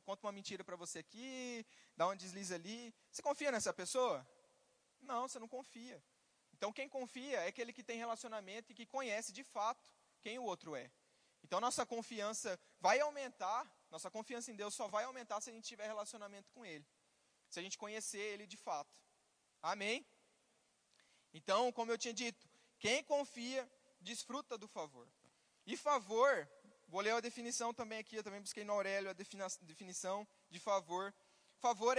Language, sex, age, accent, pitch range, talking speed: Portuguese, male, 20-39, Brazilian, 200-250 Hz, 170 wpm